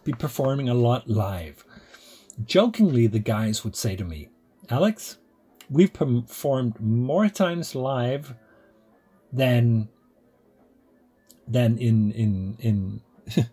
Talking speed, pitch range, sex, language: 100 wpm, 110-155 Hz, male, English